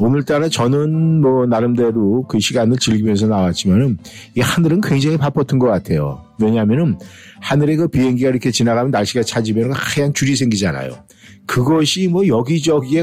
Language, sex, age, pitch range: Korean, male, 50-69, 100-130 Hz